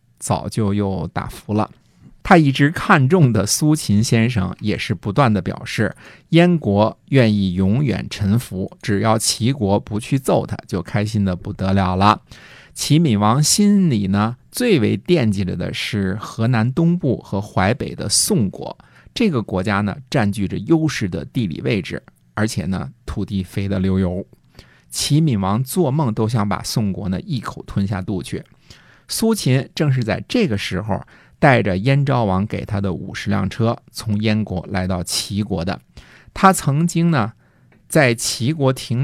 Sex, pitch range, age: male, 100-140 Hz, 50-69